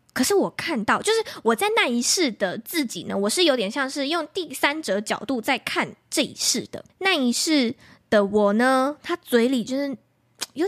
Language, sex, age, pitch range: Chinese, female, 10-29, 215-305 Hz